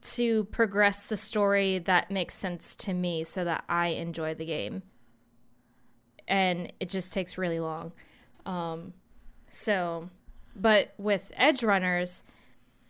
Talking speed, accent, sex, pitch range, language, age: 125 wpm, American, female, 170-205 Hz, English, 20-39